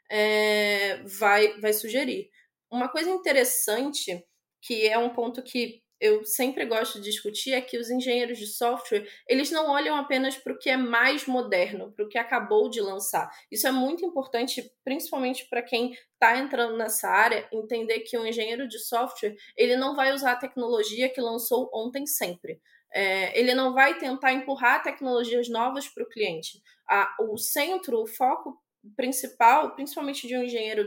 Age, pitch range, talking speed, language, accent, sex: 20-39, 230-270 Hz, 165 wpm, Portuguese, Brazilian, female